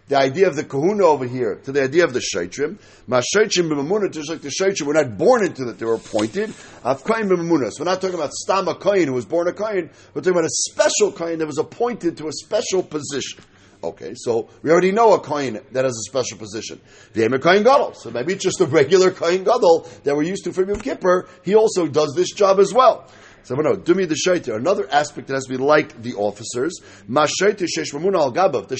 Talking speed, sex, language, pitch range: 215 wpm, male, English, 140-195 Hz